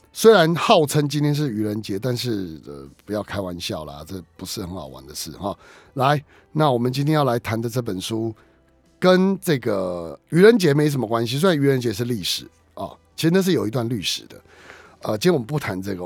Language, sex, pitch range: Chinese, male, 110-160 Hz